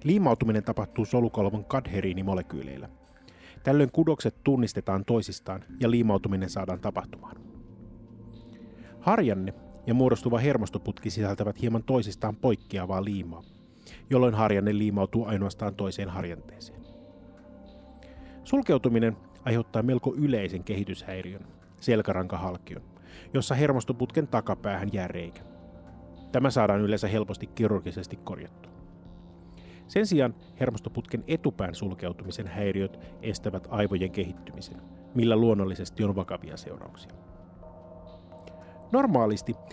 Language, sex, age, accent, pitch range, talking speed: Finnish, male, 30-49, native, 90-120 Hz, 90 wpm